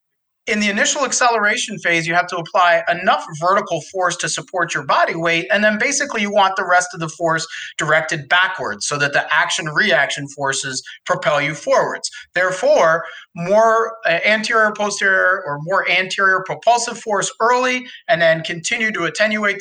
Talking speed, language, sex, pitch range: 160 wpm, English, male, 165-210 Hz